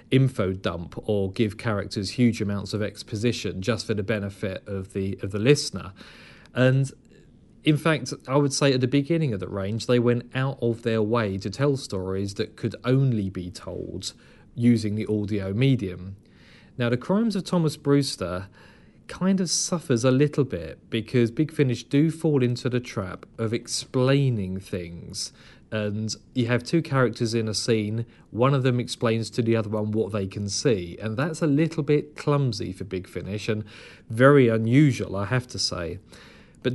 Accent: British